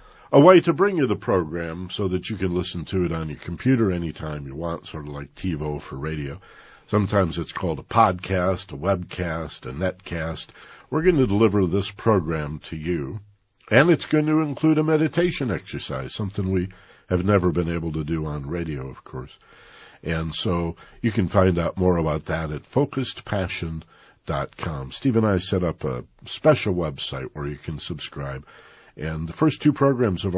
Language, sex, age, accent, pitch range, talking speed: English, male, 50-69, American, 80-115 Hz, 180 wpm